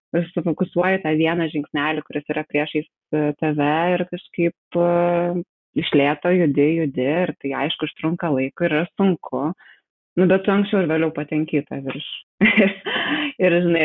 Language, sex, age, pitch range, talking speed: English, female, 20-39, 150-175 Hz, 145 wpm